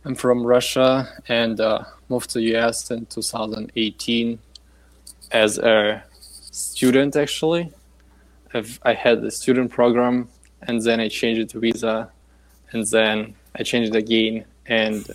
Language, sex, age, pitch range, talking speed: English, male, 20-39, 110-125 Hz, 140 wpm